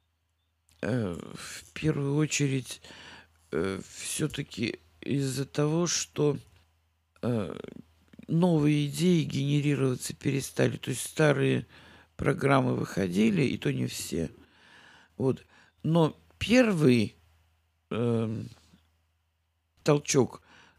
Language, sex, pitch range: Russian, male, 90-150 Hz